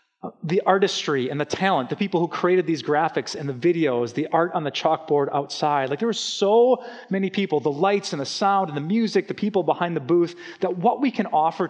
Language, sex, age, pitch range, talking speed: English, male, 30-49, 145-205 Hz, 225 wpm